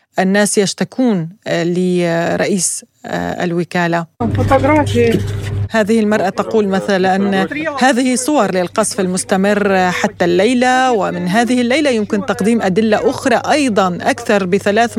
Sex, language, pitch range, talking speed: female, Arabic, 190-240 Hz, 100 wpm